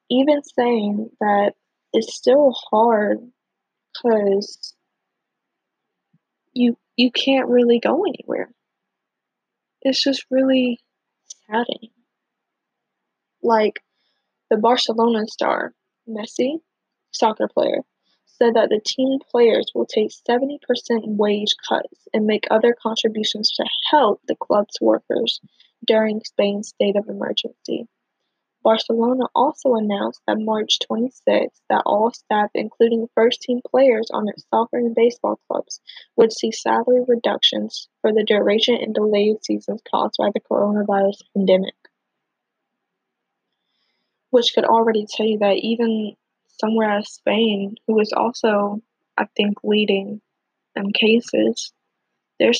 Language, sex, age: English, female, 10-29